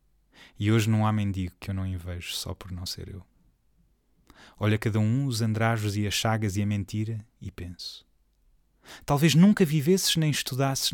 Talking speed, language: 180 wpm, Portuguese